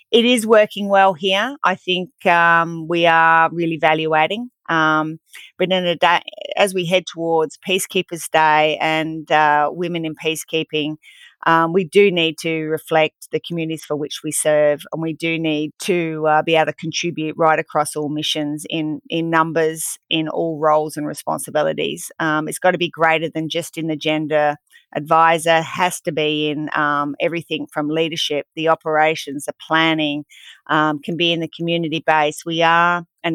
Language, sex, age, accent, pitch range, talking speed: English, female, 30-49, Australian, 155-170 Hz, 175 wpm